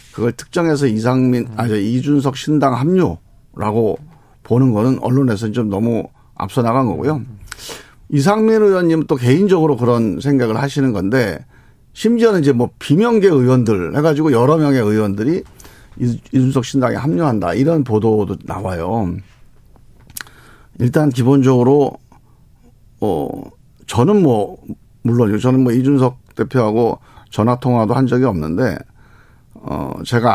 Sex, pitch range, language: male, 110-140 Hz, Korean